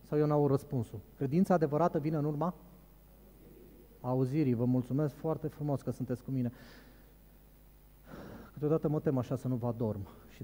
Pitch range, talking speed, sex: 120-165 Hz, 155 wpm, male